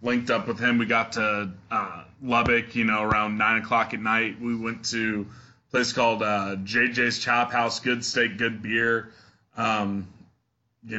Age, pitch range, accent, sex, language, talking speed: 20-39, 110-125 Hz, American, male, English, 170 wpm